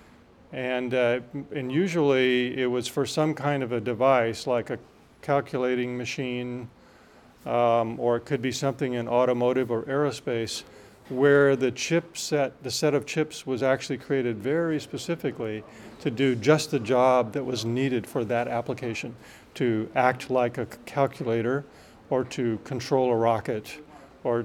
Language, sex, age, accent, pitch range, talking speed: Danish, male, 40-59, American, 120-140 Hz, 150 wpm